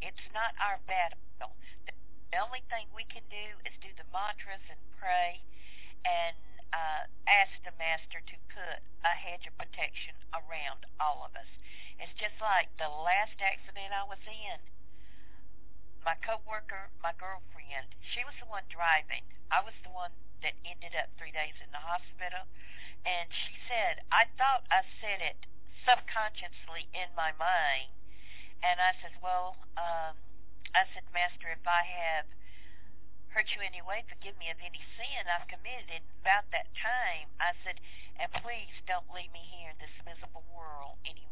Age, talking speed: 50-69, 160 wpm